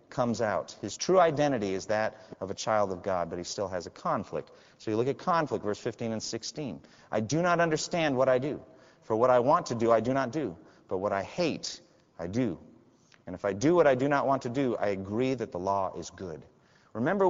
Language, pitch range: English, 115-170 Hz